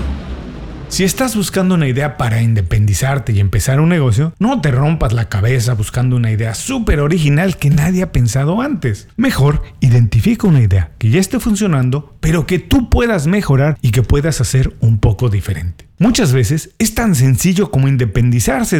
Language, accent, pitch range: Spanish, Mexican, 115-160 Hz